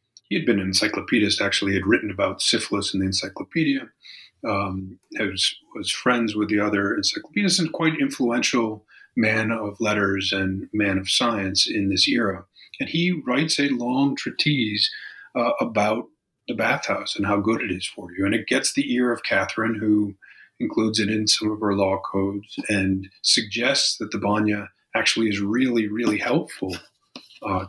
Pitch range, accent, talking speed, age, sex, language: 95-115 Hz, American, 165 wpm, 40-59, male, English